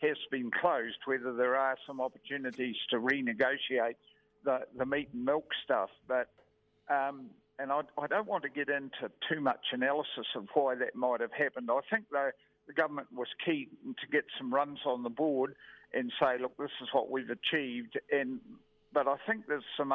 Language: English